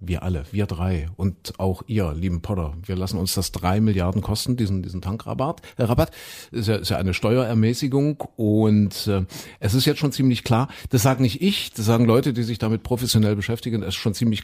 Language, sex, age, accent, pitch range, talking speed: German, male, 50-69, German, 100-125 Hz, 205 wpm